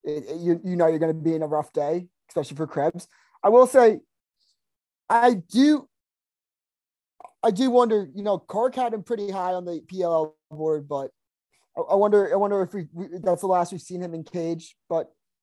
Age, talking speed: 20-39, 205 wpm